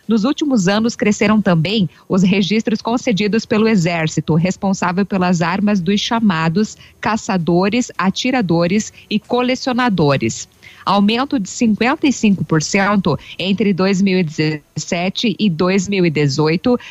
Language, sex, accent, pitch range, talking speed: Portuguese, female, Brazilian, 185-225 Hz, 90 wpm